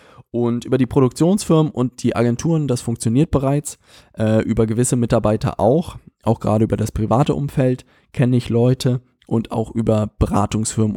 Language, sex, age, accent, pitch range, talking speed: German, male, 20-39, German, 110-135 Hz, 155 wpm